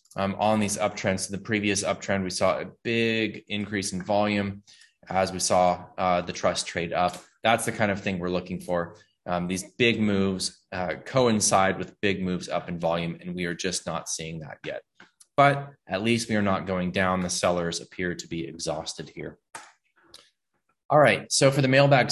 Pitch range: 95-110 Hz